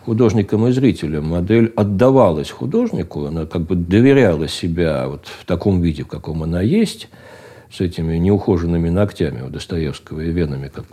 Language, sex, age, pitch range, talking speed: Russian, male, 60-79, 90-125 Hz, 150 wpm